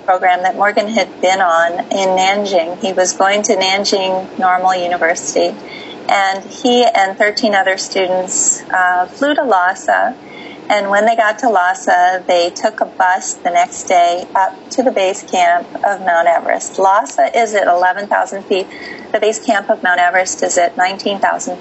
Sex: female